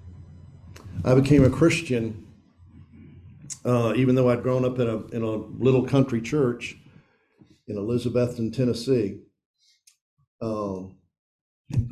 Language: English